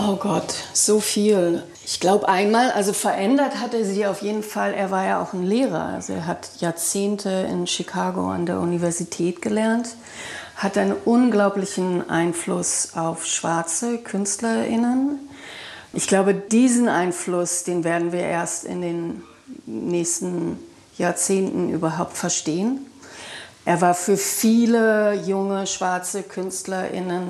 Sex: female